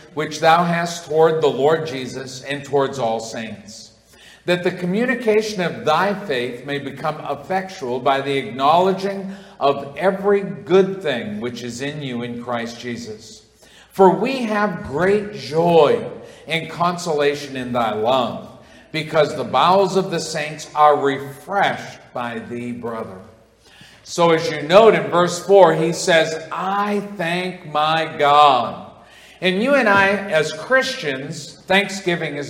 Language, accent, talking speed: English, American, 140 wpm